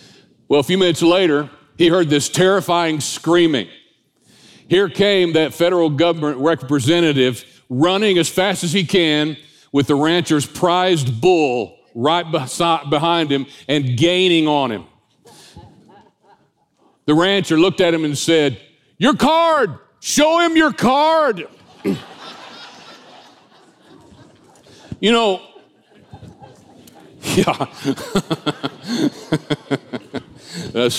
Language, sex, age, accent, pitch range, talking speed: English, male, 50-69, American, 130-175 Hz, 100 wpm